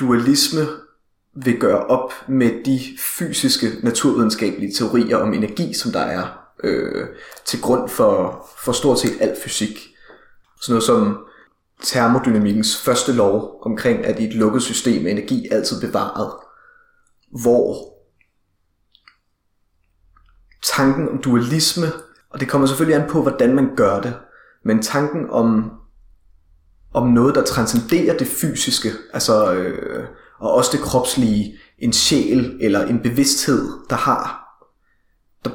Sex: male